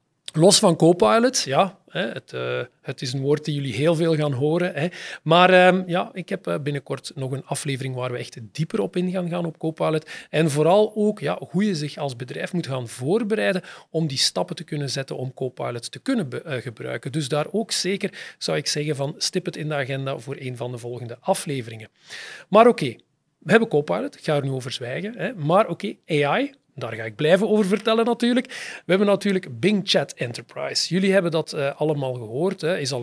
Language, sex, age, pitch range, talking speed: Dutch, male, 40-59, 135-180 Hz, 215 wpm